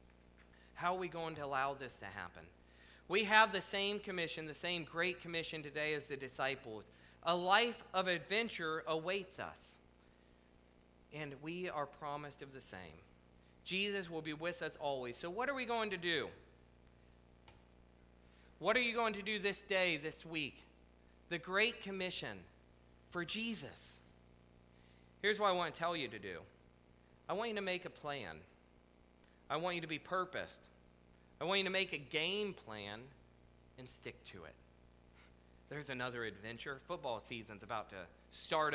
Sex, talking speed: male, 165 wpm